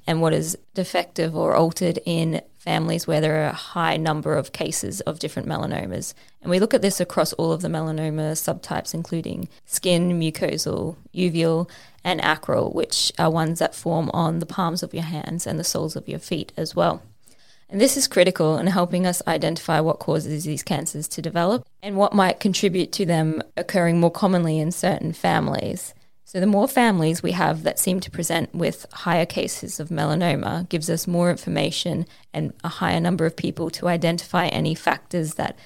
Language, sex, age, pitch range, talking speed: English, female, 20-39, 160-180 Hz, 185 wpm